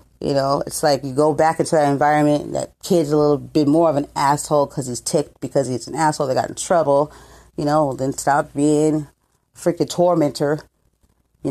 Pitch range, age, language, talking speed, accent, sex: 135-160 Hz, 30-49, English, 205 wpm, American, female